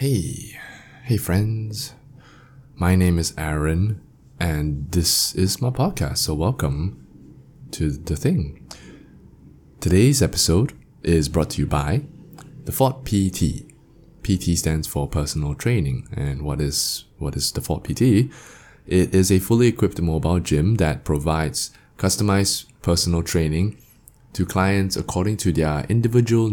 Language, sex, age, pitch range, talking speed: English, male, 20-39, 80-115 Hz, 125 wpm